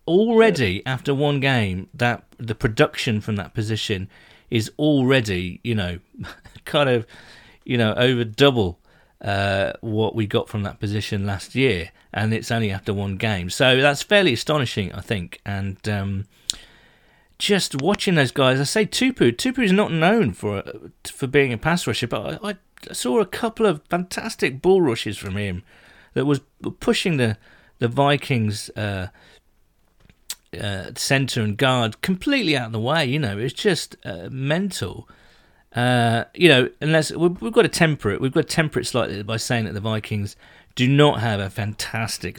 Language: English